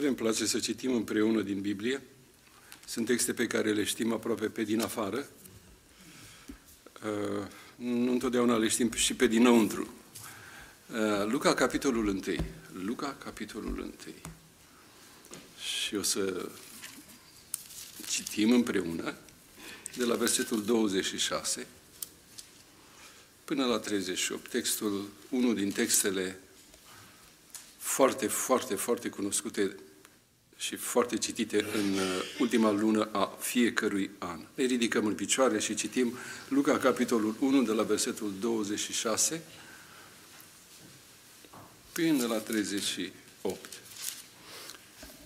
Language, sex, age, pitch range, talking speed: Romanian, male, 60-79, 105-120 Hz, 100 wpm